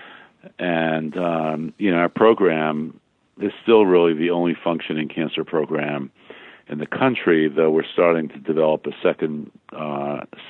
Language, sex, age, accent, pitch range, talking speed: English, male, 50-69, American, 75-85 Hz, 145 wpm